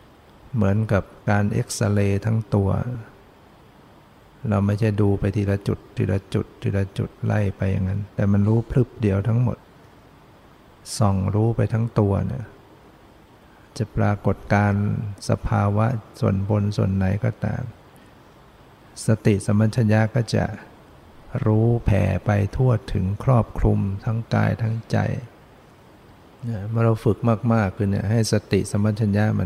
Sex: male